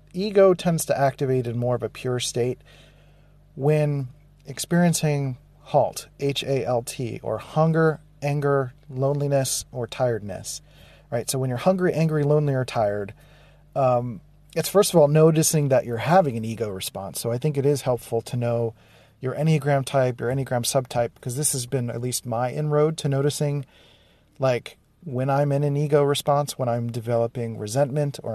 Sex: male